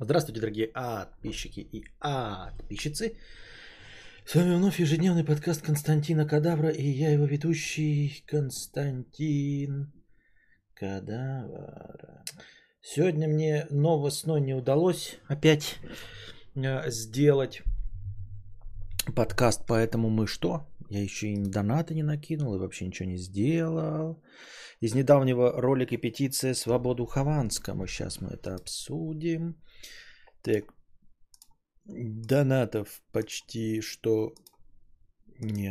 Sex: male